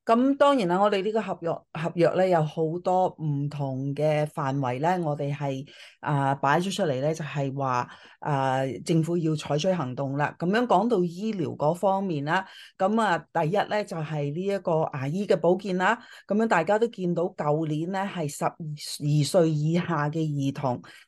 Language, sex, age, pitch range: Chinese, female, 30-49, 150-195 Hz